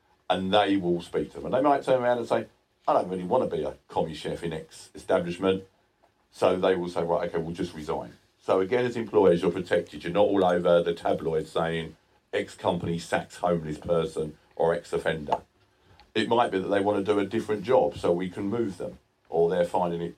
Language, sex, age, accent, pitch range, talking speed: English, male, 50-69, British, 85-100 Hz, 225 wpm